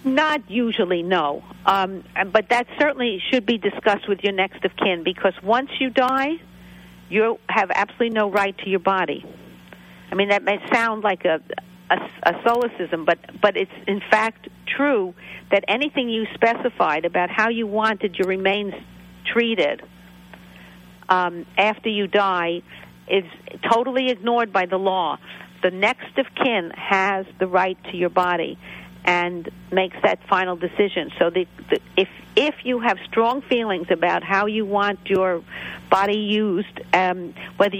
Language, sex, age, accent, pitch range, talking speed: English, female, 50-69, American, 180-220 Hz, 155 wpm